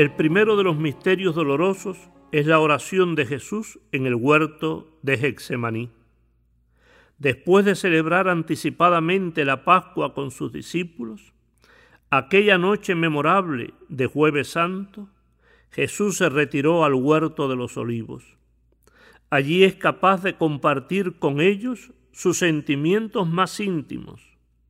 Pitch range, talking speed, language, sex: 120-175 Hz, 120 wpm, Spanish, male